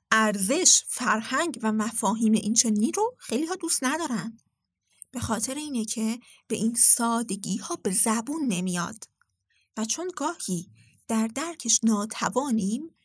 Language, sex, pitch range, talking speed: Persian, female, 205-260 Hz, 125 wpm